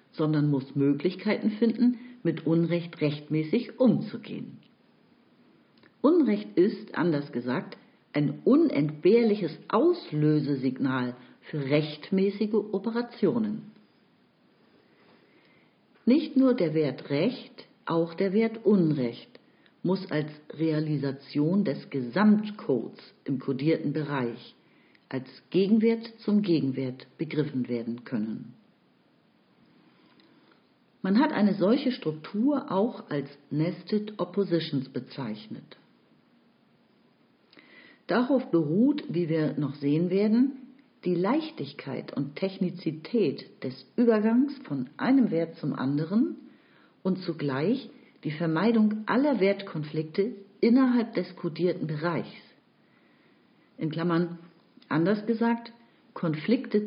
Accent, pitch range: German, 150-230 Hz